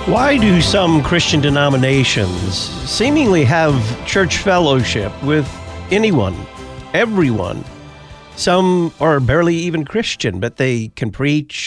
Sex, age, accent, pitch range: male, 50-69, American, 105-150 Hz